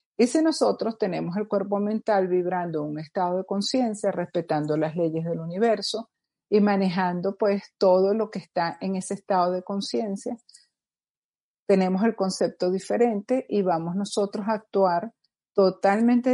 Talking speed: 145 wpm